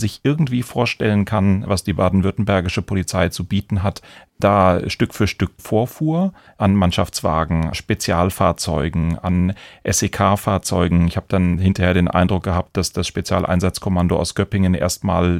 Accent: German